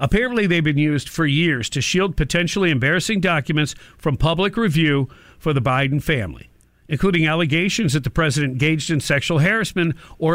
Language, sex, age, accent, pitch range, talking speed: English, male, 50-69, American, 145-190 Hz, 160 wpm